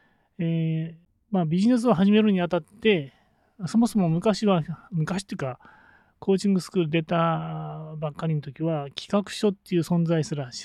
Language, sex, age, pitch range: Japanese, male, 30-49, 155-200 Hz